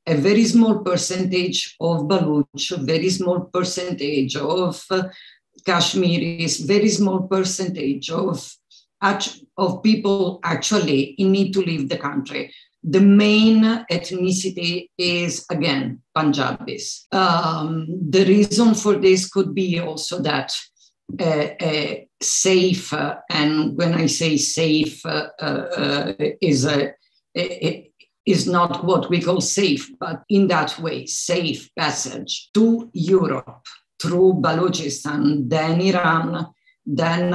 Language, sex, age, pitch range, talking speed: English, female, 50-69, 160-190 Hz, 120 wpm